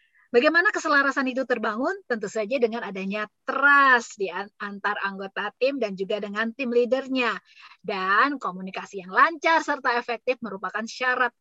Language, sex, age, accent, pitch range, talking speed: English, female, 20-39, Indonesian, 210-260 Hz, 135 wpm